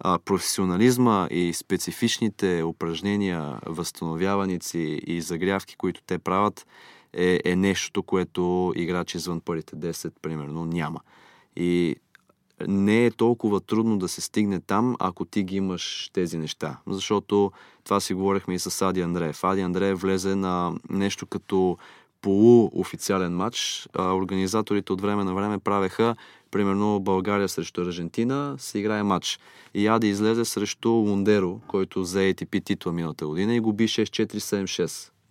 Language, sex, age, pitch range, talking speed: Bulgarian, male, 30-49, 90-105 Hz, 135 wpm